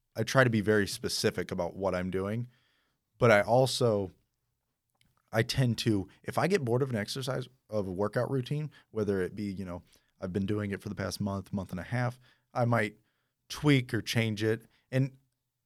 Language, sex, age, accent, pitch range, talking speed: English, male, 30-49, American, 95-120 Hz, 195 wpm